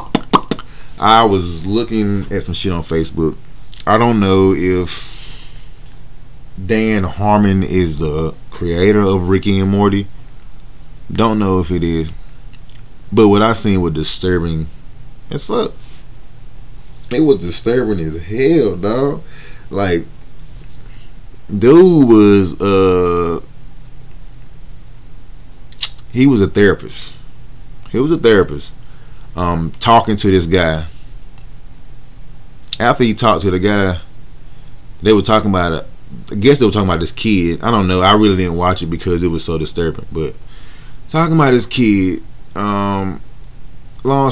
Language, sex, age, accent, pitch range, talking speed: English, male, 20-39, American, 95-130 Hz, 130 wpm